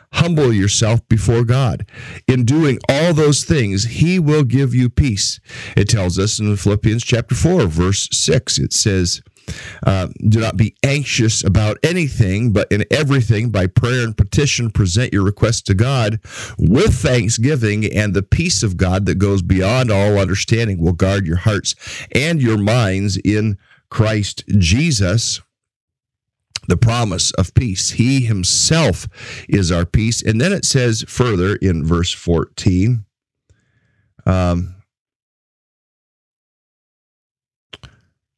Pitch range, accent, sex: 100-125 Hz, American, male